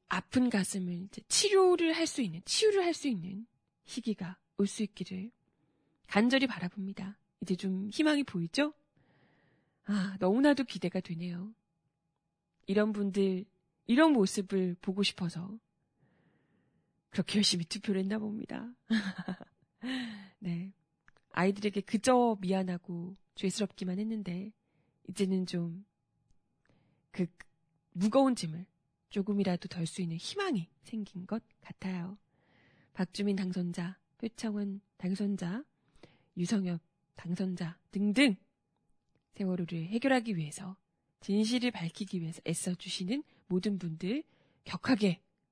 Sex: female